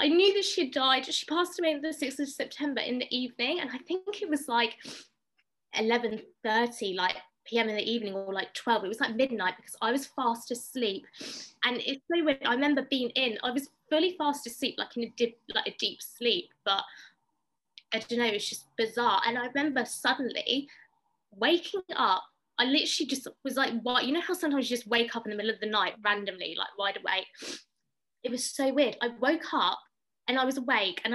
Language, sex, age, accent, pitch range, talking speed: English, female, 20-39, British, 205-270 Hz, 210 wpm